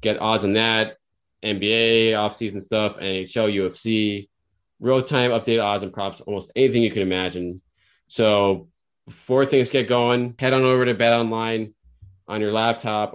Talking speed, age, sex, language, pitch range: 155 wpm, 20-39, male, English, 95-115 Hz